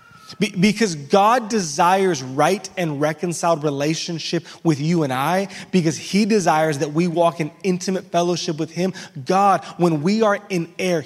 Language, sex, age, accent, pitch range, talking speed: English, male, 20-39, American, 155-185 Hz, 150 wpm